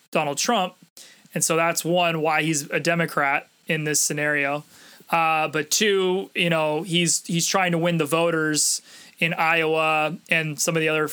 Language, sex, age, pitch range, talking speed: English, male, 20-39, 155-175 Hz, 175 wpm